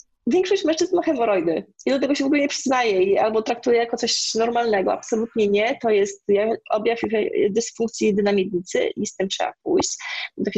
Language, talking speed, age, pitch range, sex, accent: Polish, 175 wpm, 30-49, 195-230 Hz, female, native